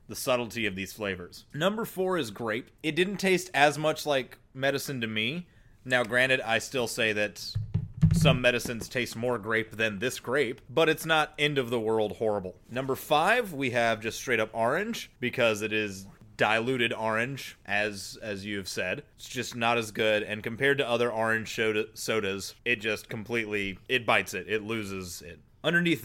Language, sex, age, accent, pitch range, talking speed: English, male, 30-49, American, 110-140 Hz, 175 wpm